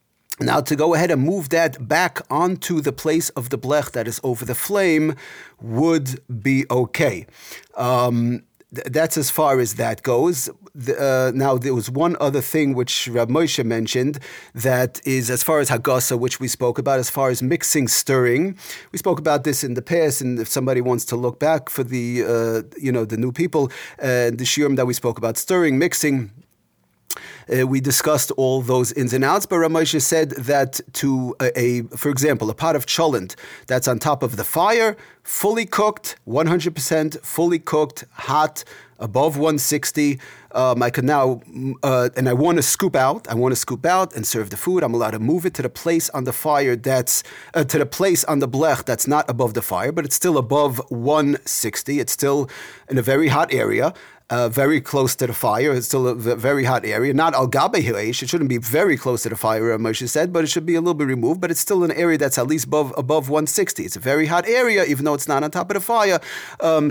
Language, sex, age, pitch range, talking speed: English, male, 40-59, 125-155 Hz, 220 wpm